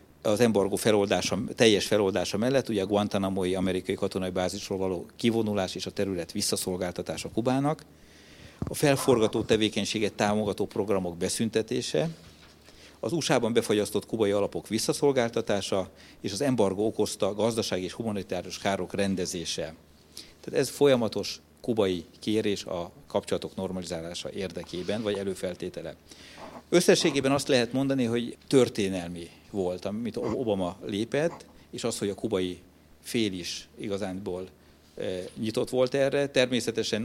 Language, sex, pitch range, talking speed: Hungarian, male, 90-110 Hz, 120 wpm